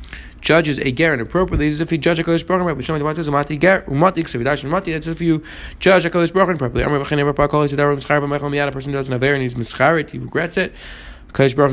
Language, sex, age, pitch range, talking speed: English, male, 20-39, 125-155 Hz, 155 wpm